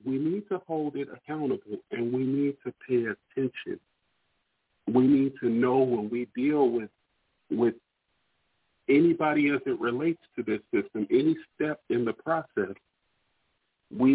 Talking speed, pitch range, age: 145 wpm, 125-155 Hz, 40-59